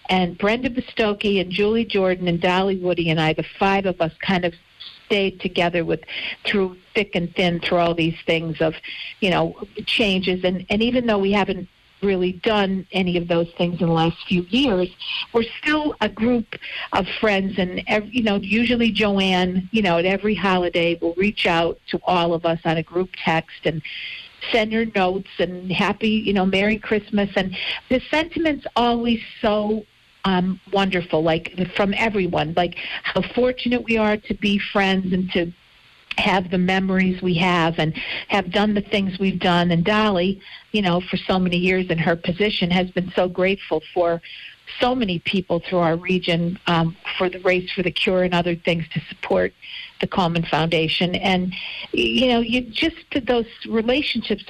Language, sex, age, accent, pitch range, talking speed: English, female, 50-69, American, 175-215 Hz, 180 wpm